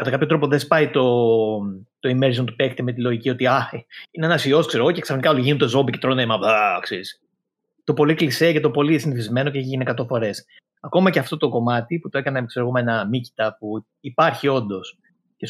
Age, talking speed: 30-49, 220 wpm